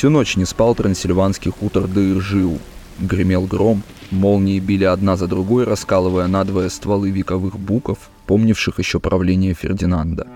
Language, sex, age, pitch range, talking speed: Russian, male, 20-39, 95-105 Hz, 135 wpm